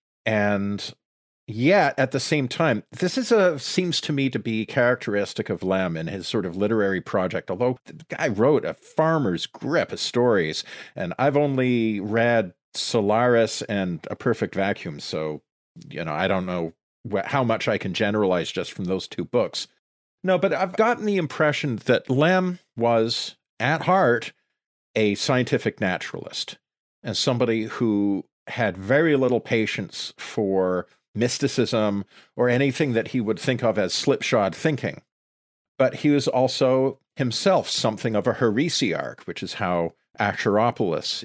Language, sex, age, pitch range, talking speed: English, male, 50-69, 100-140 Hz, 150 wpm